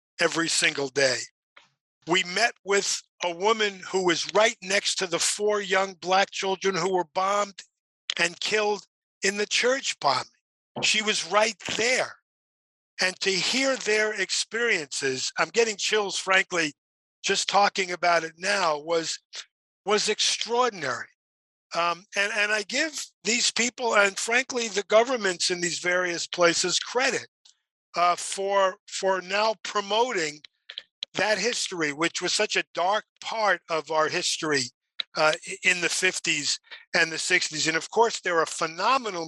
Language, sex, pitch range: English, male, 170-210 Hz